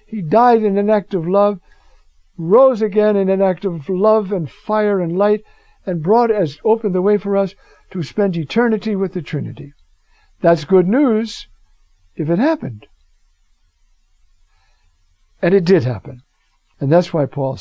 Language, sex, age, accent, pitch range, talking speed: English, male, 60-79, American, 145-200 Hz, 155 wpm